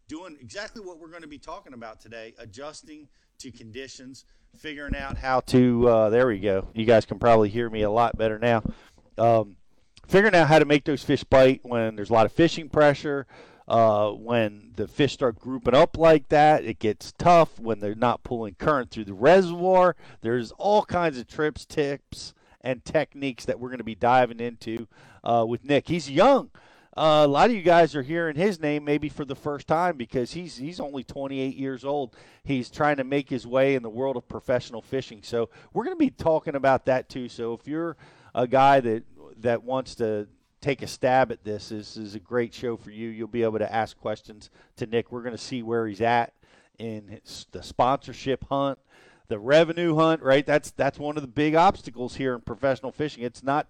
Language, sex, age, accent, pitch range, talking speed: English, male, 40-59, American, 115-150 Hz, 210 wpm